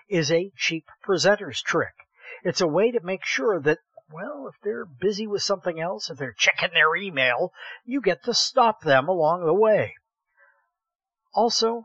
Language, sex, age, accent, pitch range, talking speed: English, male, 50-69, American, 155-230 Hz, 165 wpm